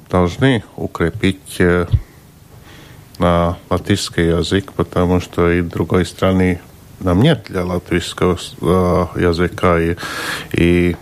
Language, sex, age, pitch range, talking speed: Russian, male, 50-69, 85-95 Hz, 105 wpm